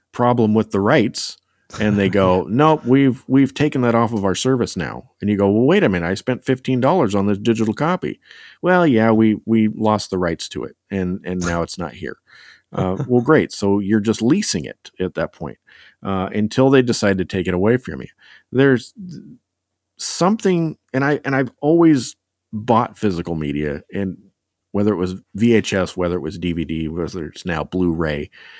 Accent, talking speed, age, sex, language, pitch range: American, 190 wpm, 40-59, male, English, 90-120 Hz